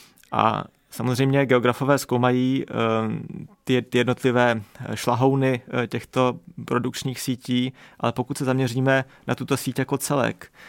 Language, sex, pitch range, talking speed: Czech, male, 120-135 Hz, 110 wpm